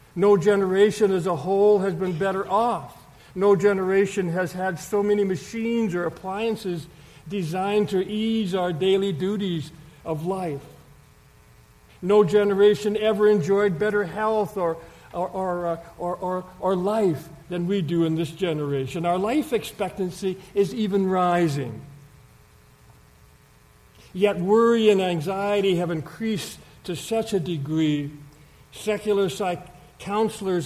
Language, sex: English, male